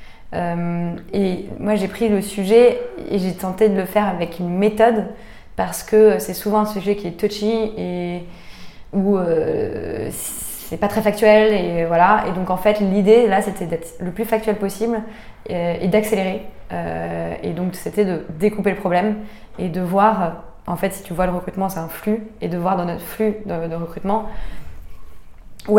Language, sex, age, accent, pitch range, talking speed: French, female, 20-39, French, 170-210 Hz, 175 wpm